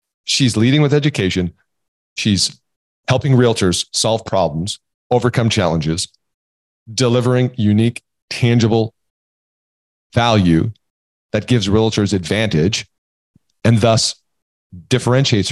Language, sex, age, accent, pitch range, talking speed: English, male, 40-59, American, 90-120 Hz, 85 wpm